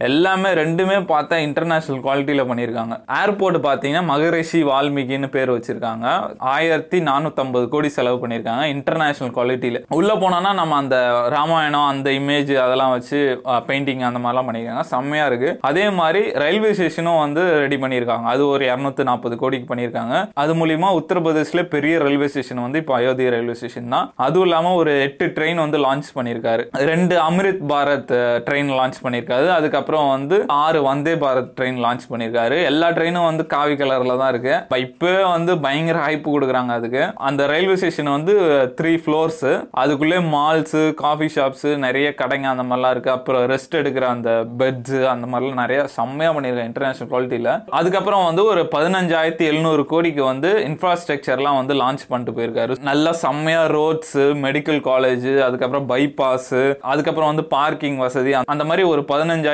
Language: Tamil